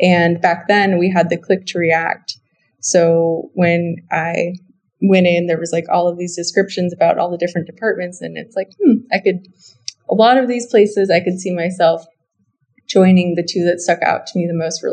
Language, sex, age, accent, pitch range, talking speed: English, female, 20-39, American, 170-190 Hz, 210 wpm